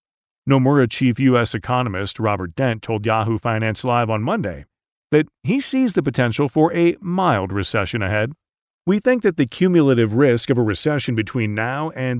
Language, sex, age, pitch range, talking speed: English, male, 40-59, 110-165 Hz, 165 wpm